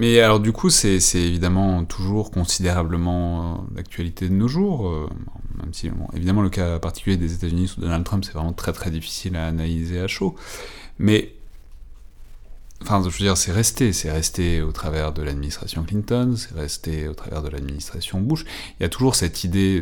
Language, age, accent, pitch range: French, 30-49, French, 80-100 Hz